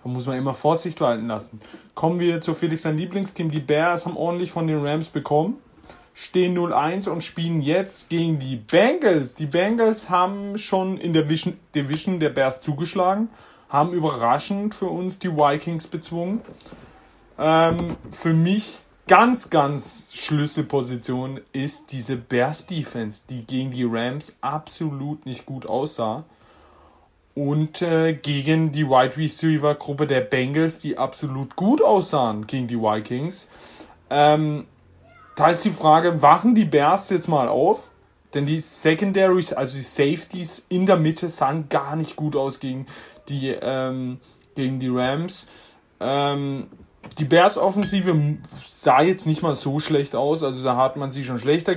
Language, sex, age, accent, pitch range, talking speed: German, male, 30-49, German, 135-170 Hz, 145 wpm